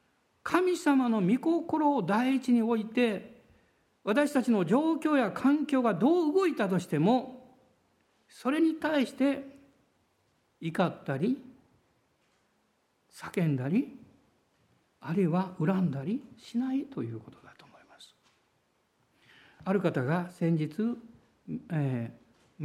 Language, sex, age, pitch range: Japanese, male, 60-79, 185-270 Hz